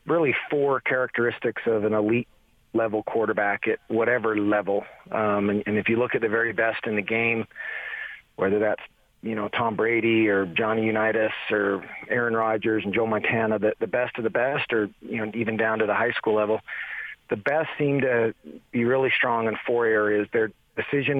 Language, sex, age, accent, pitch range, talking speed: English, male, 40-59, American, 105-115 Hz, 190 wpm